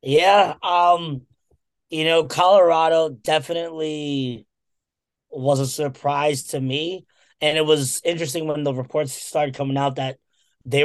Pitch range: 130-150 Hz